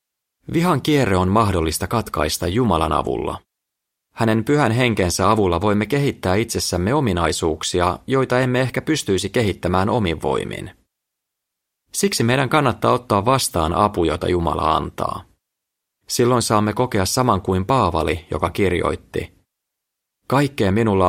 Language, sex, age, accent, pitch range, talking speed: Finnish, male, 30-49, native, 85-120 Hz, 115 wpm